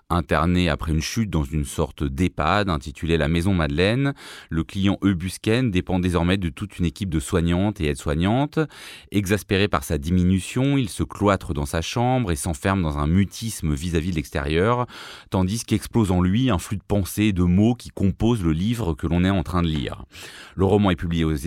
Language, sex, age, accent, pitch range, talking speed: French, male, 30-49, French, 85-110 Hz, 200 wpm